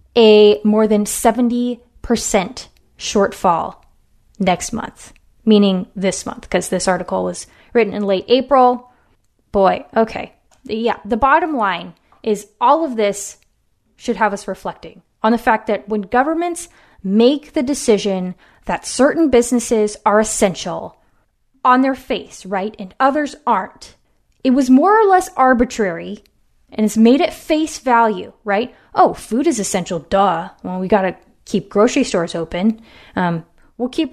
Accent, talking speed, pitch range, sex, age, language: American, 145 wpm, 195-245 Hz, female, 20-39, English